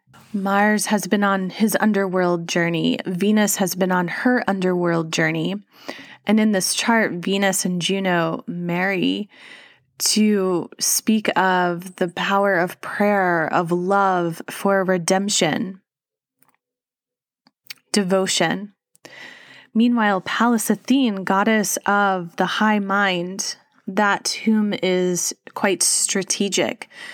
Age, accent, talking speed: 20-39, American, 105 wpm